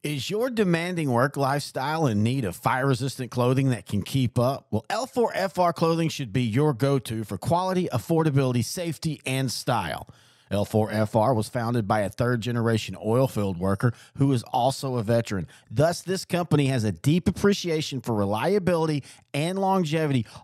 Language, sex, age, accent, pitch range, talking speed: English, male, 40-59, American, 115-155 Hz, 160 wpm